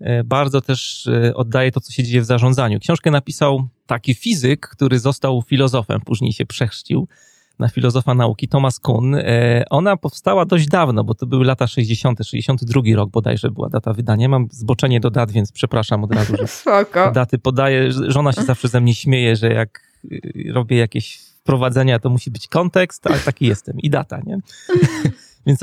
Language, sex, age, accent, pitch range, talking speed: Polish, male, 30-49, native, 115-140 Hz, 170 wpm